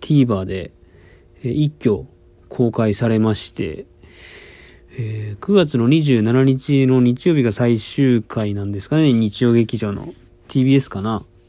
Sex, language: male, Japanese